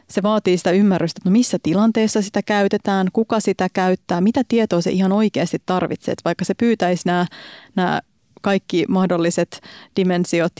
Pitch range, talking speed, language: 175-205 Hz, 155 wpm, Finnish